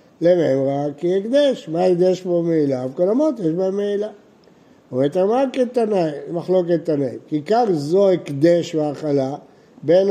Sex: male